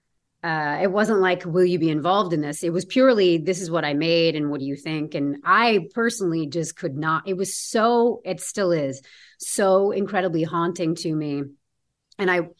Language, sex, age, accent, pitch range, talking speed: English, female, 30-49, American, 160-195 Hz, 200 wpm